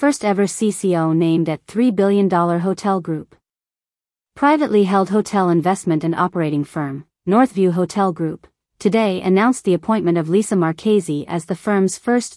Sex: female